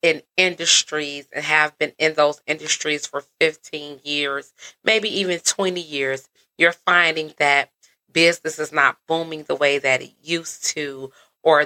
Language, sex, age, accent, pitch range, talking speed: English, female, 30-49, American, 150-185 Hz, 145 wpm